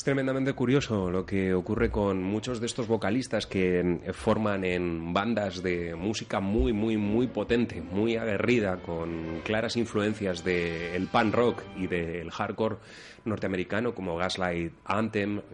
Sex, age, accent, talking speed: male, 30-49, Spanish, 140 wpm